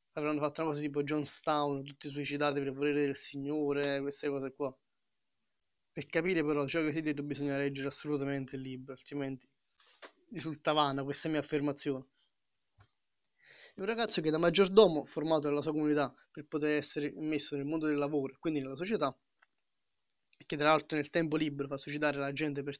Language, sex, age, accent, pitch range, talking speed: Italian, male, 20-39, native, 140-155 Hz, 175 wpm